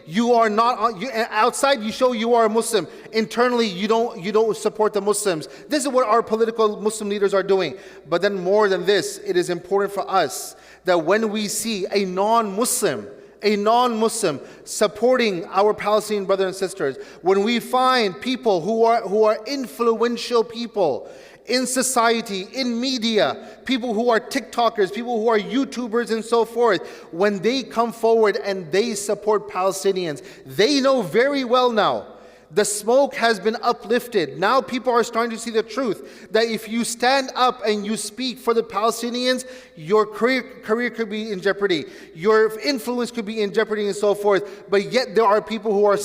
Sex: male